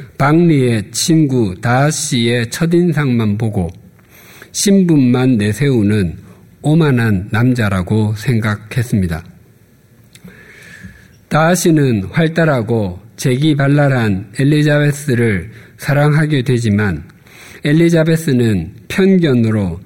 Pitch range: 110-150 Hz